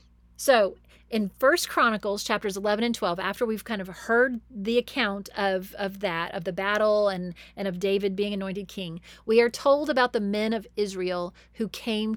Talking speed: 185 wpm